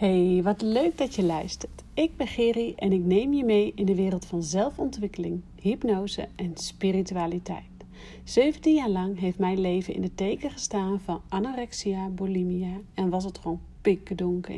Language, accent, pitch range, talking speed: Dutch, Dutch, 185-225 Hz, 165 wpm